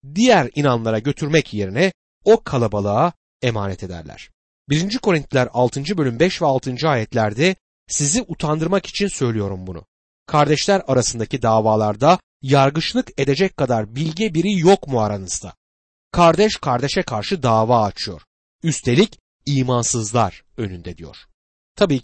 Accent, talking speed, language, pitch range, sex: native, 115 wpm, Turkish, 115-180 Hz, male